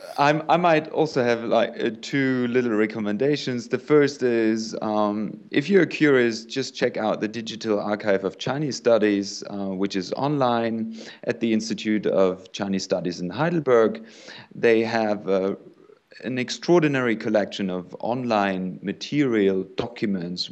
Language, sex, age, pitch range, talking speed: English, male, 30-49, 100-125 Hz, 140 wpm